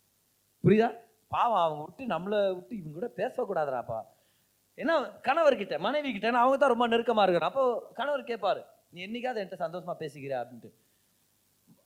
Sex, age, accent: male, 30-49, native